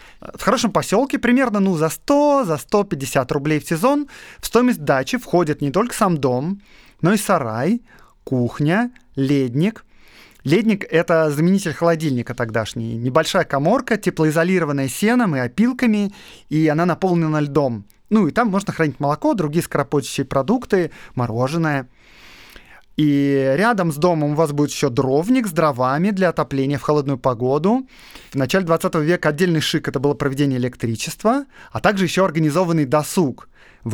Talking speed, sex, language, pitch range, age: 145 wpm, male, Russian, 145-195 Hz, 30-49